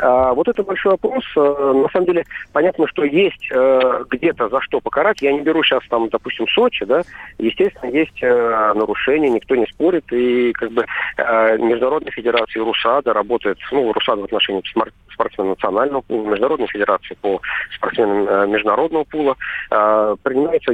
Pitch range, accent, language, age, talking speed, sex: 110-155 Hz, native, Russian, 40-59, 140 wpm, male